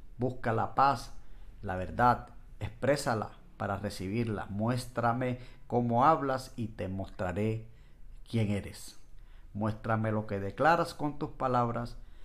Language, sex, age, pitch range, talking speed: Spanish, male, 50-69, 105-125 Hz, 115 wpm